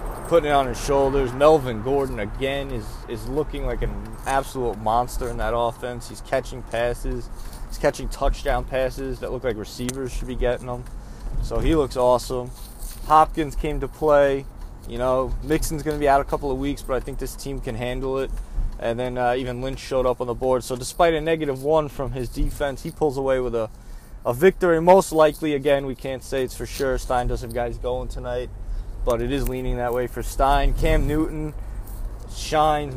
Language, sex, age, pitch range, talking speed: English, male, 20-39, 120-140 Hz, 200 wpm